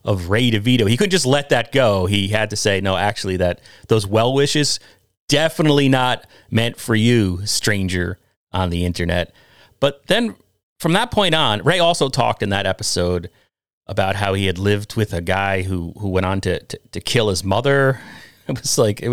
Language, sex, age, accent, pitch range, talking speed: English, male, 30-49, American, 90-115 Hz, 195 wpm